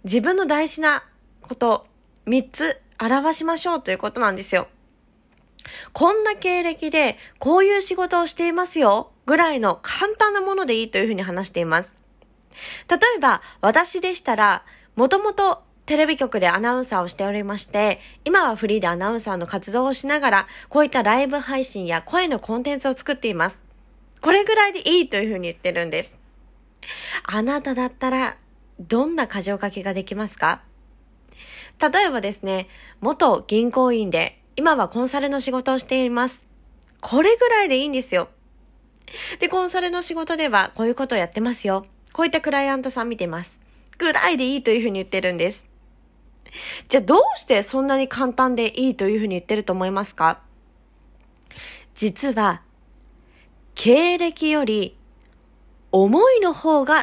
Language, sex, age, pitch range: Japanese, female, 20-39, 205-320 Hz